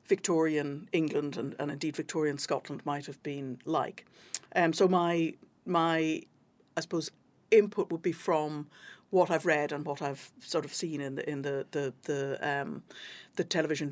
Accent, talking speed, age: British, 165 wpm, 60-79